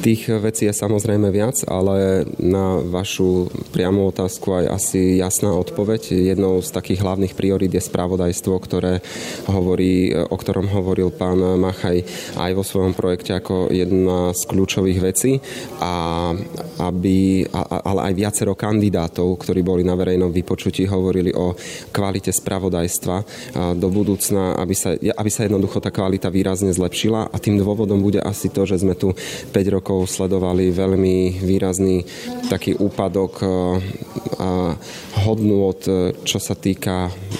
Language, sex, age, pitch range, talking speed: Slovak, male, 20-39, 90-100 Hz, 135 wpm